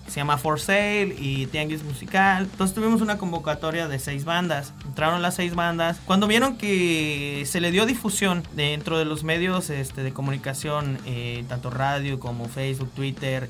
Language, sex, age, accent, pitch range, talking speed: Spanish, male, 30-49, Mexican, 150-195 Hz, 165 wpm